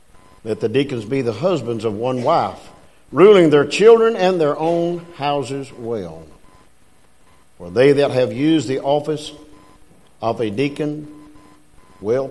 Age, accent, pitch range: 50-69, American, 100-145 Hz